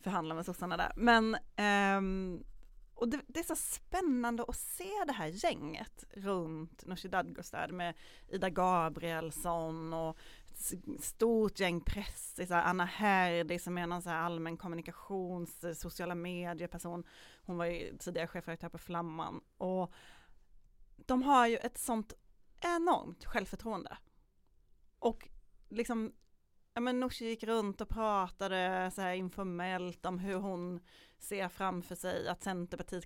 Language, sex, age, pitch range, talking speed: Swedish, female, 30-49, 170-200 Hz, 140 wpm